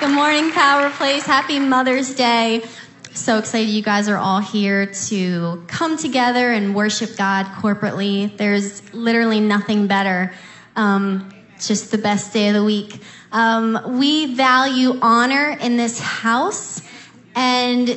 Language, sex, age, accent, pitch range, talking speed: English, female, 20-39, American, 205-240 Hz, 140 wpm